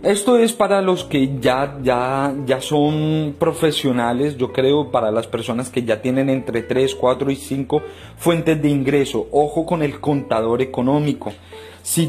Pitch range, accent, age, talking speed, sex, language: 125-165 Hz, Colombian, 30-49, 160 wpm, male, Spanish